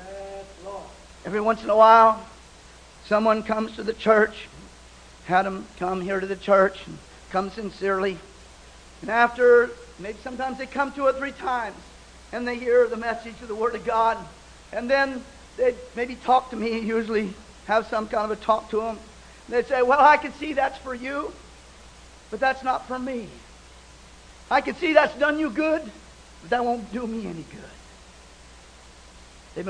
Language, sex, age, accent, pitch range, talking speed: English, male, 50-69, American, 195-235 Hz, 175 wpm